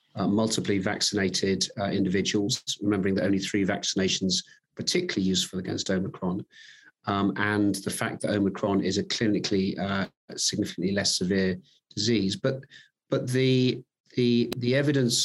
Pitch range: 100-120 Hz